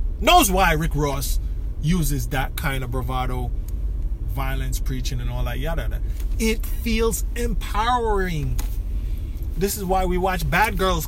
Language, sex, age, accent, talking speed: English, male, 20-39, American, 140 wpm